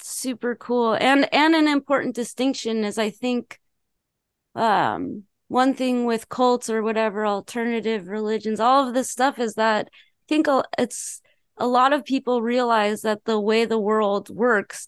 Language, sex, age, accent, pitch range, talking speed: English, female, 20-39, American, 210-240 Hz, 155 wpm